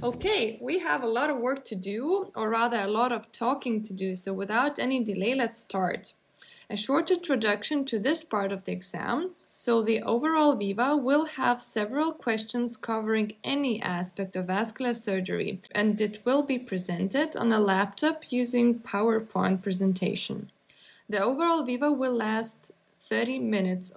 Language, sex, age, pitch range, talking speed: English, female, 20-39, 195-260 Hz, 160 wpm